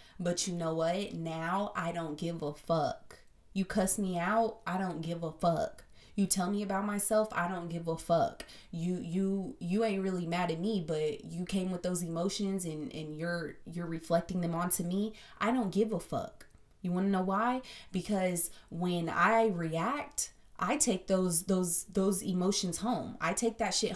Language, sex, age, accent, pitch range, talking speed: English, female, 20-39, American, 170-220 Hz, 190 wpm